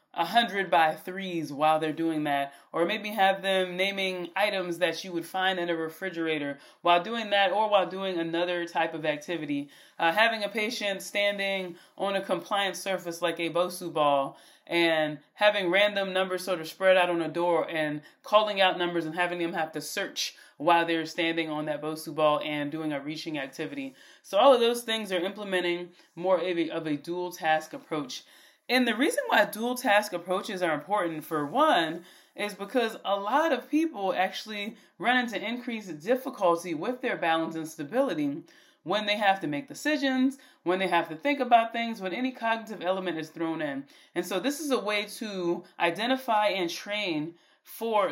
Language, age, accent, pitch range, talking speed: English, 30-49, American, 165-225 Hz, 185 wpm